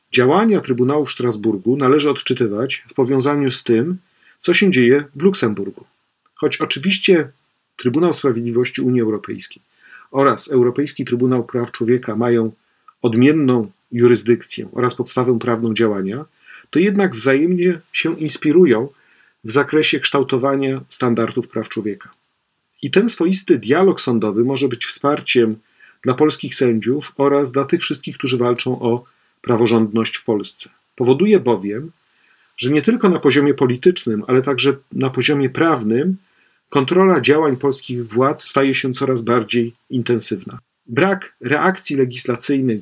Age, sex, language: 40-59, male, Polish